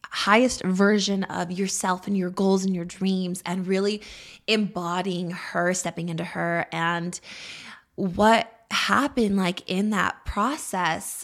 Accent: American